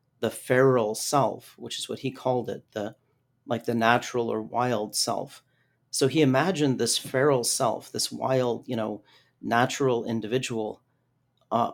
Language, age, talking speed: English, 40-59, 150 wpm